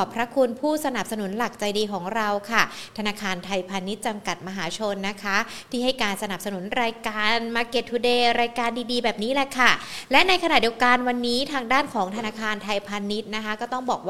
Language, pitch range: Thai, 205-255 Hz